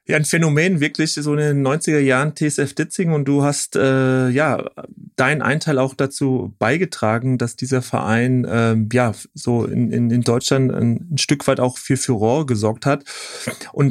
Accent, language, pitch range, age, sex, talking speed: German, German, 135-170 Hz, 30-49, male, 175 wpm